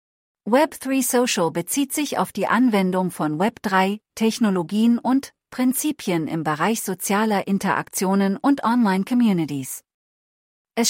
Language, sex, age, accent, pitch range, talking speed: English, female, 40-59, German, 175-230 Hz, 105 wpm